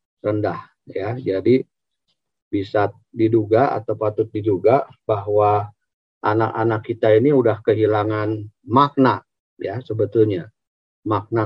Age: 40-59